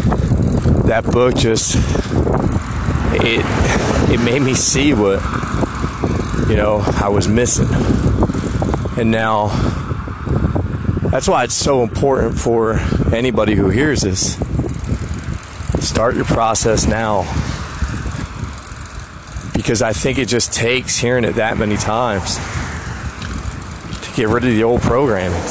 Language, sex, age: English, male, 40-59